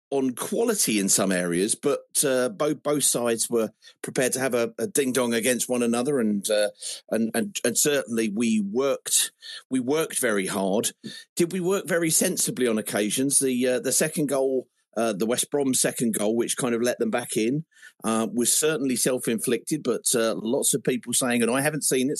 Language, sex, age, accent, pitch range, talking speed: English, male, 40-59, British, 120-155 Hz, 195 wpm